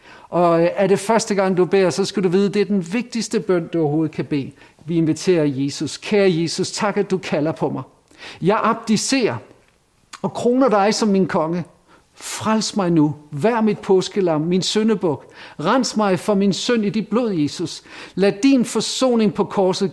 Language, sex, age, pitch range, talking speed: Danish, male, 50-69, 150-205 Hz, 185 wpm